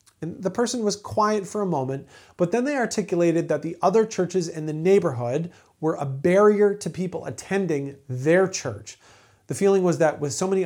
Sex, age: male, 40-59